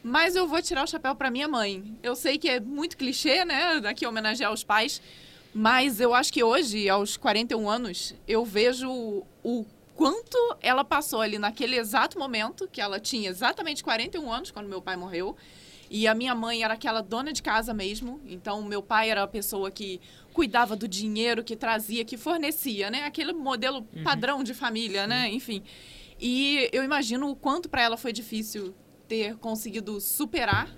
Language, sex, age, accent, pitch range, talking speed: Portuguese, female, 20-39, Brazilian, 195-250 Hz, 180 wpm